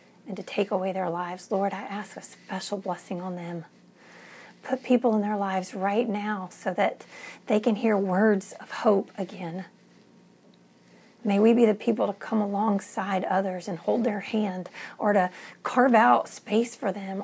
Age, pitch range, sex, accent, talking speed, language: 40-59, 180-220 Hz, female, American, 175 wpm, English